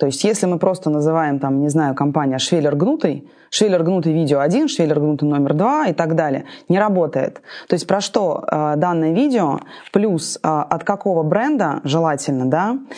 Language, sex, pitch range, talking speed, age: Russian, female, 155-195 Hz, 165 wpm, 20-39